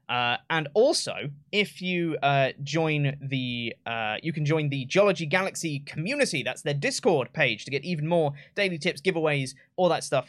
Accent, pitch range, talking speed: British, 140-180 Hz, 175 wpm